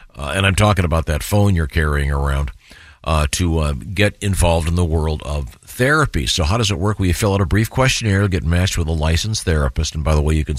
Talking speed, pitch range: 250 wpm, 80-110 Hz